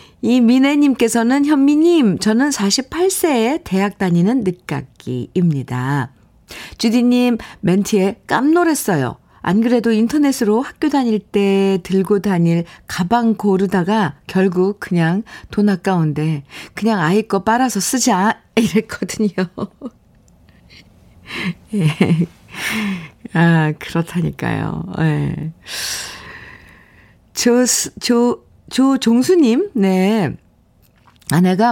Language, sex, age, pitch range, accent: Korean, female, 50-69, 175-240 Hz, native